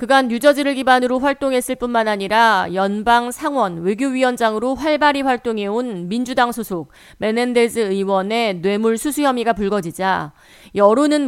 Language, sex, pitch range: Korean, female, 190-260 Hz